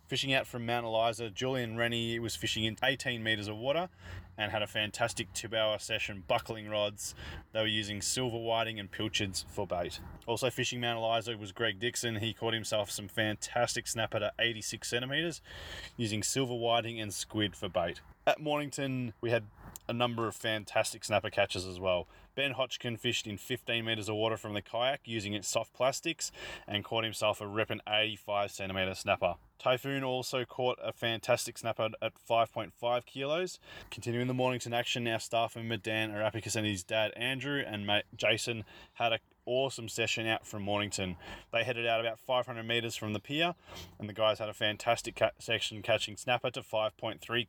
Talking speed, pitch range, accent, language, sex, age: 180 wpm, 105-120 Hz, Australian, English, male, 20-39